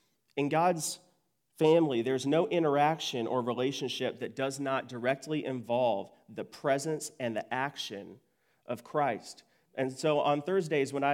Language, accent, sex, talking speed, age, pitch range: English, American, male, 140 wpm, 40-59, 120-150 Hz